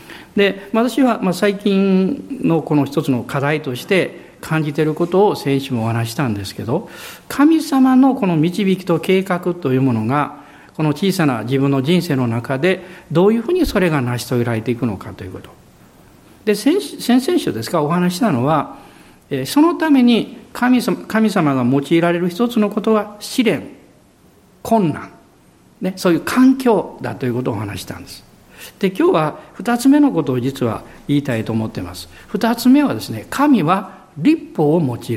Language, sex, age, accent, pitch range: Japanese, male, 50-69, native, 140-230 Hz